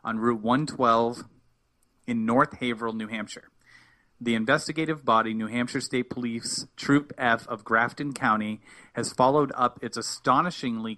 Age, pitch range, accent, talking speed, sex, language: 30-49, 115-145 Hz, American, 135 wpm, male, English